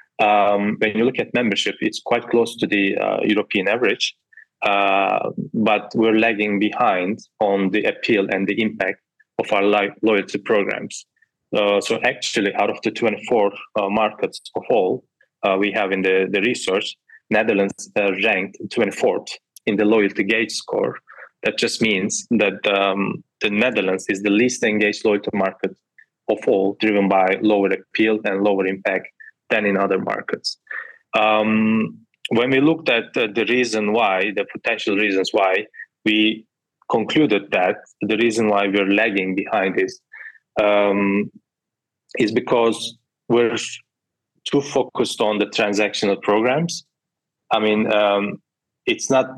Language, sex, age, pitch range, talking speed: English, male, 20-39, 100-120 Hz, 145 wpm